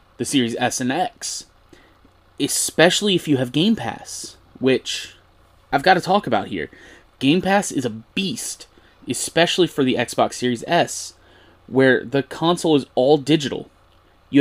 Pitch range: 115-160 Hz